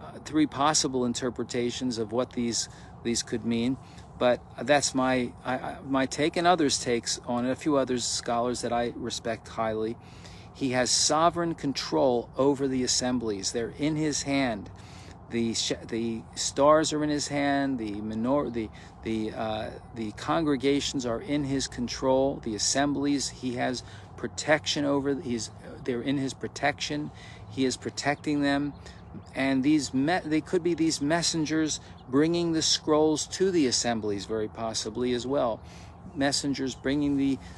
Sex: male